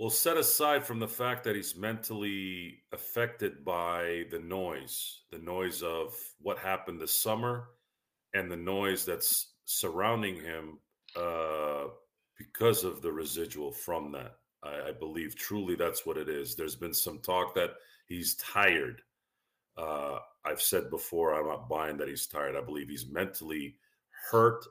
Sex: male